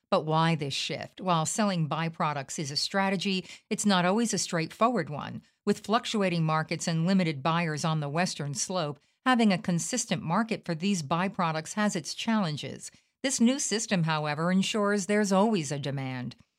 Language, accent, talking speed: English, American, 165 wpm